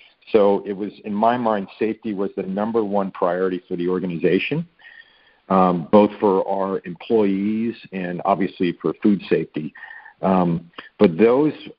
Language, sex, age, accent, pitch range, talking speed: English, male, 50-69, American, 90-110 Hz, 145 wpm